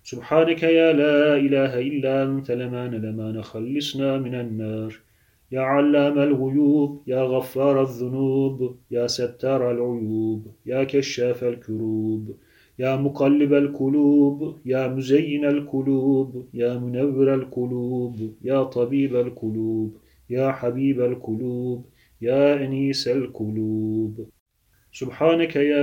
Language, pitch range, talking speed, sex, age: Turkish, 120-140 Hz, 100 wpm, male, 30-49